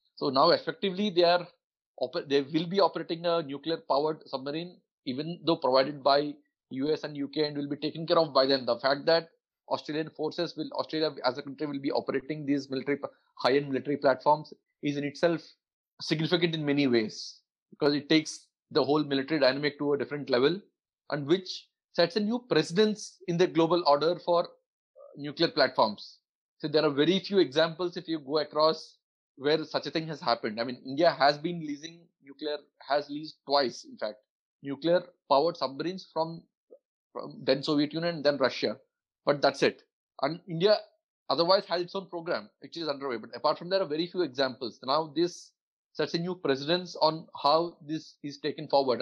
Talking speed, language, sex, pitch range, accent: 180 wpm, English, male, 145-175 Hz, Indian